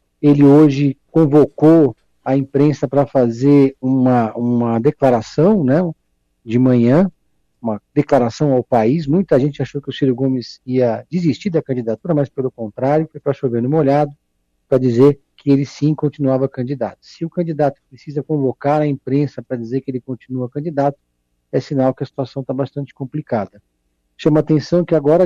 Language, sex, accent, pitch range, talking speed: Portuguese, male, Brazilian, 125-155 Hz, 160 wpm